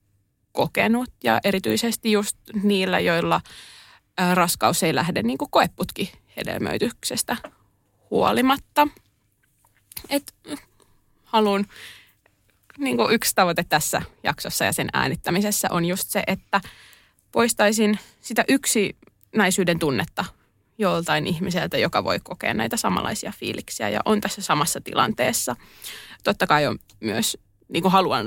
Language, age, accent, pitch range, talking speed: Finnish, 20-39, native, 125-215 Hz, 110 wpm